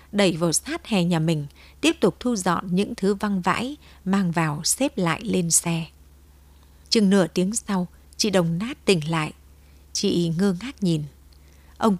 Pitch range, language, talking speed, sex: 160-205 Hz, Vietnamese, 170 wpm, female